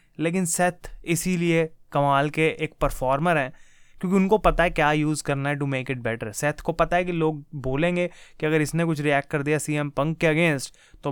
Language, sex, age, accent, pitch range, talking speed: Hindi, male, 20-39, native, 145-175 Hz, 210 wpm